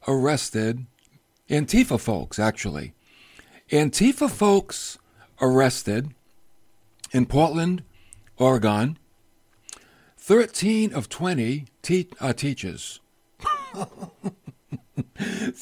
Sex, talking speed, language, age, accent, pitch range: male, 60 wpm, English, 60-79, American, 115-185 Hz